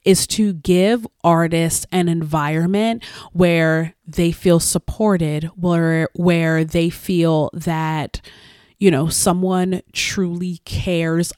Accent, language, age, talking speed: American, English, 30-49, 105 wpm